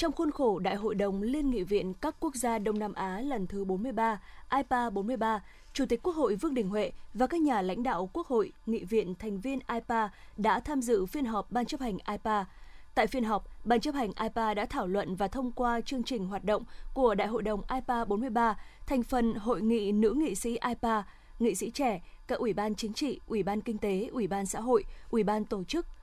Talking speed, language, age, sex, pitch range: 230 wpm, Vietnamese, 20-39, female, 210-255 Hz